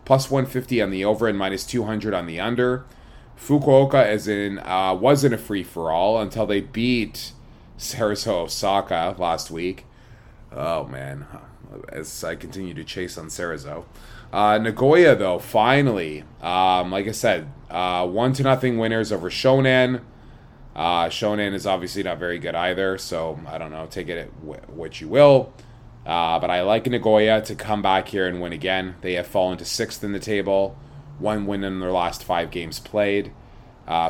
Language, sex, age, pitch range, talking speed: English, male, 20-39, 90-115 Hz, 165 wpm